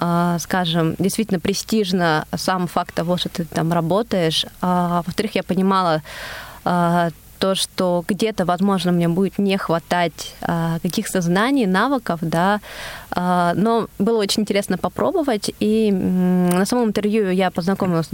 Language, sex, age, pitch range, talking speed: Russian, female, 20-39, 175-200 Hz, 120 wpm